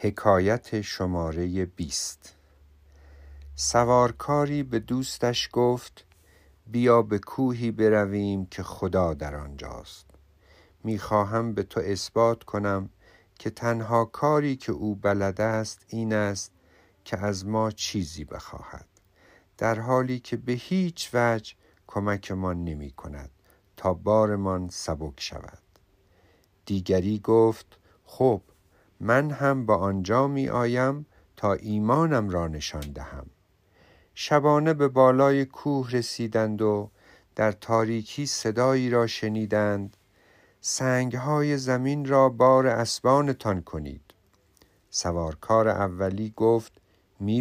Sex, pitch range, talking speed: male, 95-120 Hz, 105 wpm